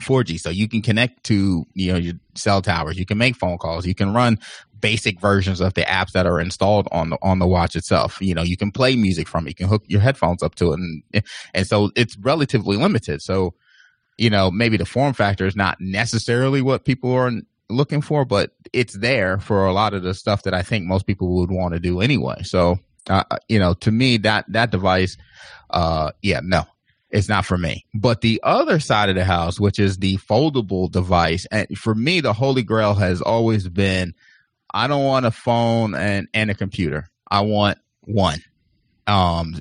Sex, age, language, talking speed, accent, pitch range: male, 30-49, English, 210 wpm, American, 90-115 Hz